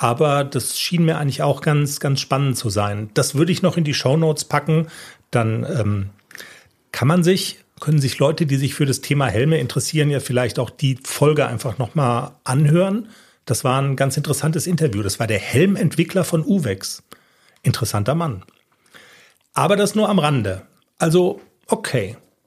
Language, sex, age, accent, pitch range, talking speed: German, male, 40-59, German, 125-160 Hz, 170 wpm